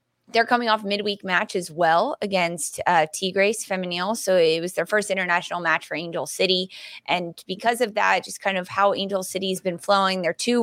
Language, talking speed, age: English, 205 wpm, 20-39